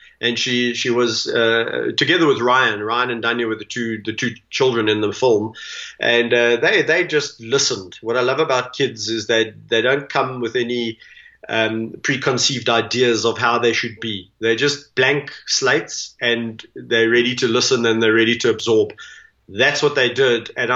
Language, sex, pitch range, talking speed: English, male, 115-145 Hz, 190 wpm